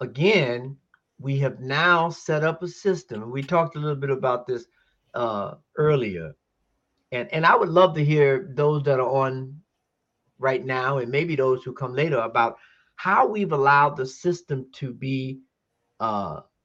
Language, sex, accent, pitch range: English, male, American, 130-160 Hz